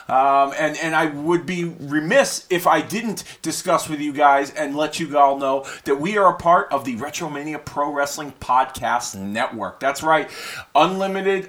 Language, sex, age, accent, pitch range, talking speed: English, male, 30-49, American, 150-180 Hz, 180 wpm